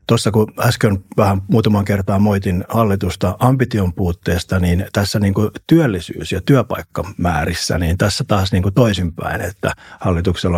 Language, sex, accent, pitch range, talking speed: Finnish, male, native, 95-115 Hz, 130 wpm